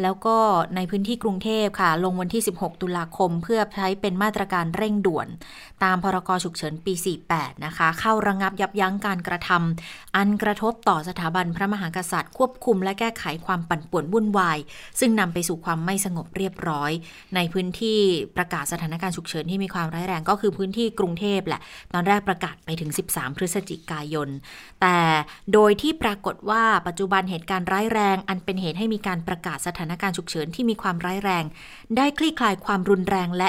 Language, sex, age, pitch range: Thai, female, 20-39, 170-210 Hz